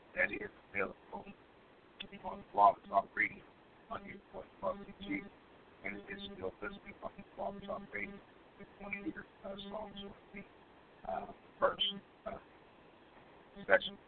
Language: English